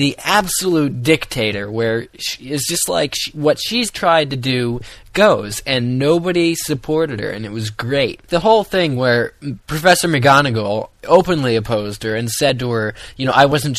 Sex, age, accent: male, 20-39, American